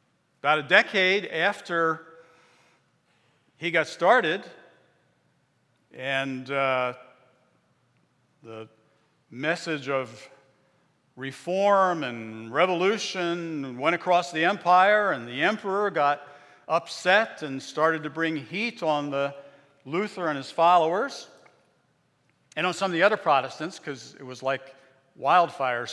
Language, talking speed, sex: English, 110 wpm, male